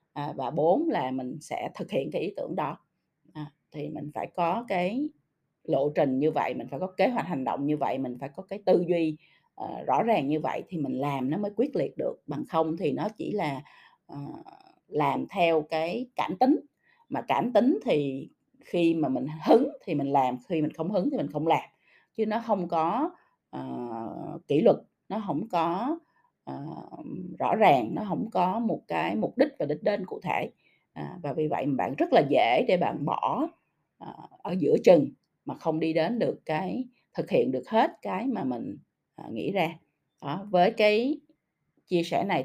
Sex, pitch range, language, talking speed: female, 150-225 Hz, Vietnamese, 190 wpm